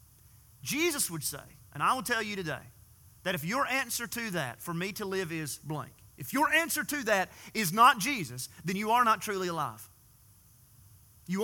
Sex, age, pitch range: male, 30-49, 125-205 Hz